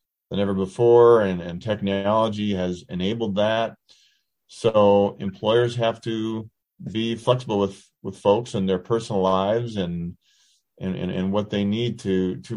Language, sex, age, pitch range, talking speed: English, male, 40-59, 95-120 Hz, 150 wpm